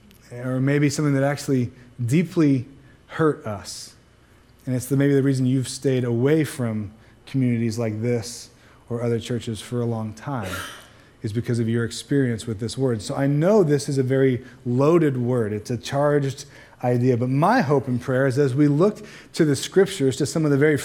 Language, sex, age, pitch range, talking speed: English, male, 30-49, 130-165 Hz, 185 wpm